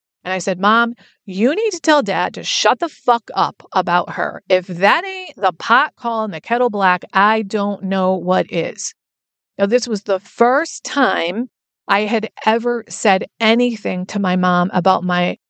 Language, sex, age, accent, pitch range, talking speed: English, female, 40-59, American, 185-230 Hz, 180 wpm